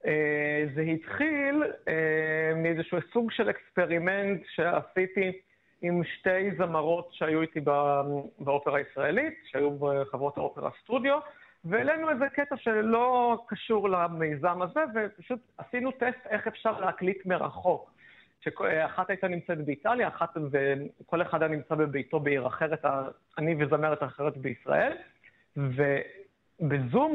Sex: male